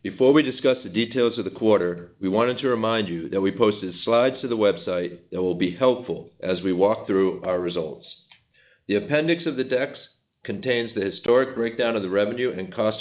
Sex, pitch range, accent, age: male, 95-120 Hz, American, 50-69